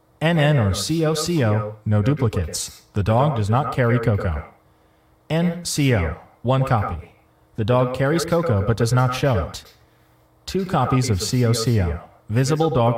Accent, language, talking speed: American, English, 135 wpm